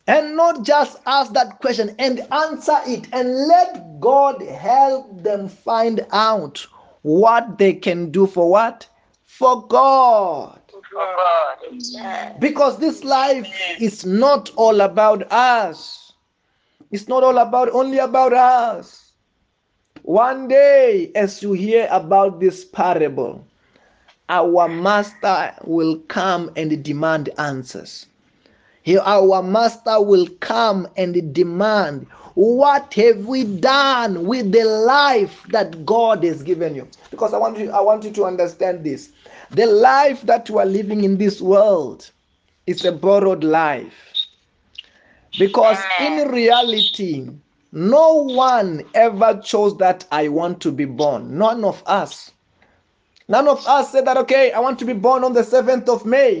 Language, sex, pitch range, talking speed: English, male, 195-265 Hz, 135 wpm